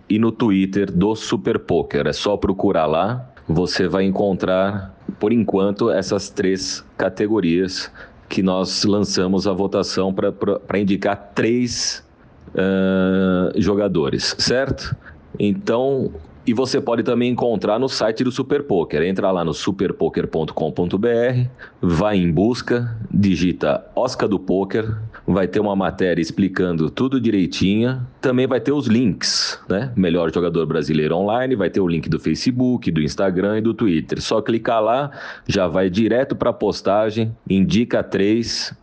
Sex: male